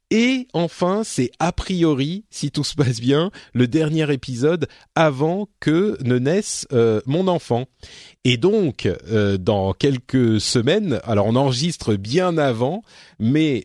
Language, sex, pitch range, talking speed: French, male, 110-155 Hz, 140 wpm